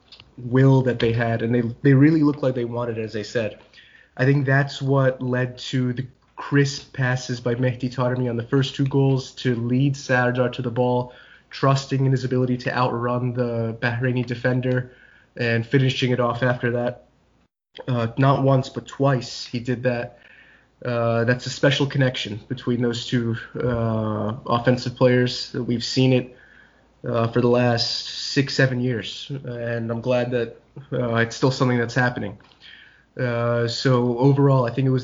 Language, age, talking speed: English, 20-39, 175 wpm